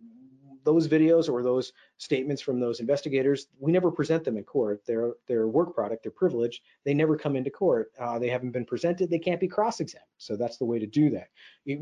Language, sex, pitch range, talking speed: English, male, 120-160 Hz, 215 wpm